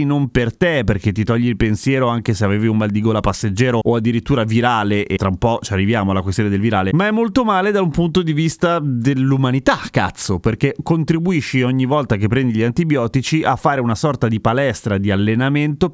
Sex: male